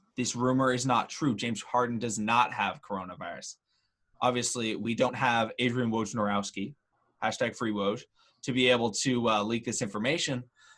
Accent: American